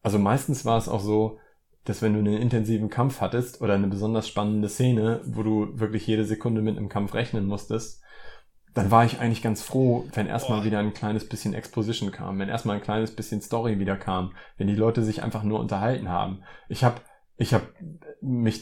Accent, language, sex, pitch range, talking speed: German, German, male, 100-115 Hz, 200 wpm